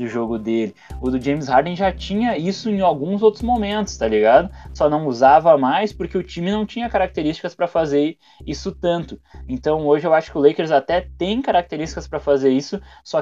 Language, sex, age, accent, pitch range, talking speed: Portuguese, male, 20-39, Brazilian, 115-155 Hz, 200 wpm